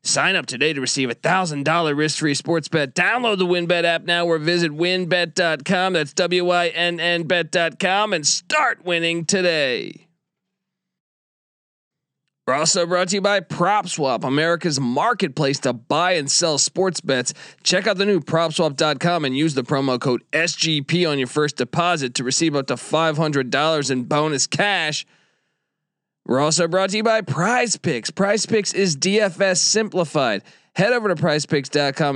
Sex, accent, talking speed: male, American, 160 wpm